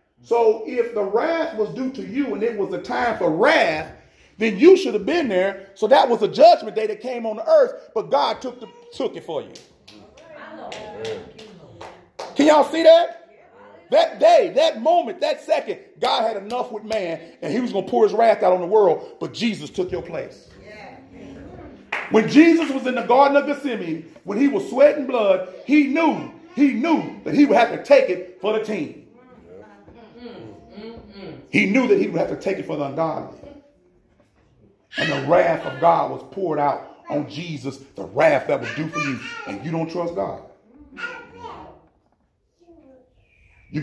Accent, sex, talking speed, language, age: American, male, 180 wpm, English, 40-59